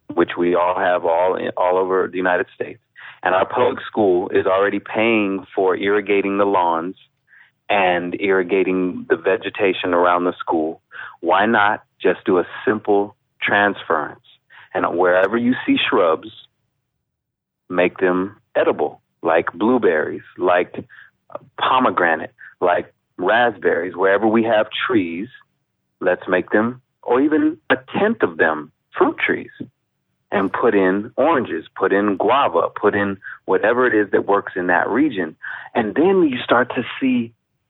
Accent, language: American, English